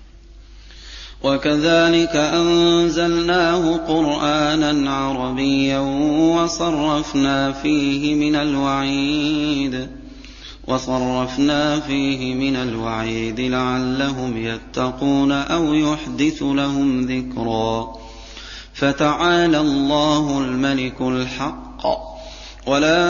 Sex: male